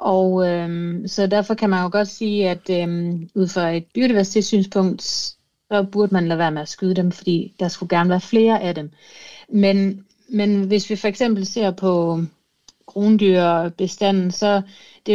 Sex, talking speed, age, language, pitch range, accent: female, 180 wpm, 30-49, Danish, 170-210 Hz, native